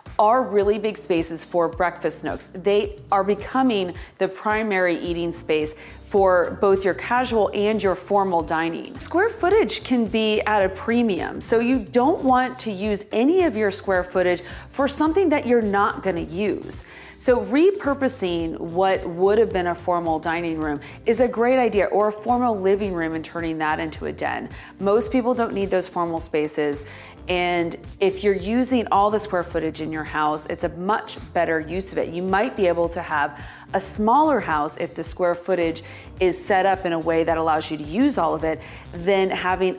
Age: 30-49